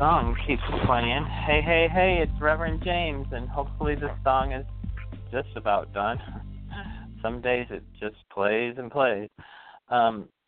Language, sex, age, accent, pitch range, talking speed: English, male, 40-59, American, 100-115 Hz, 135 wpm